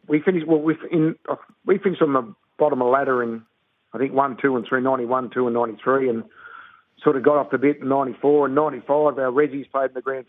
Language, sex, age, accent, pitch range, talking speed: English, male, 50-69, Australian, 125-155 Hz, 260 wpm